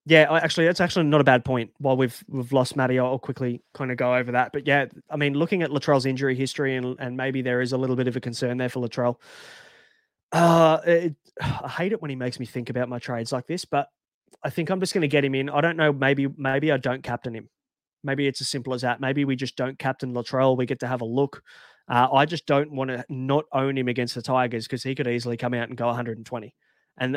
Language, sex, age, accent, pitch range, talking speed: English, male, 20-39, Australian, 125-145 Hz, 260 wpm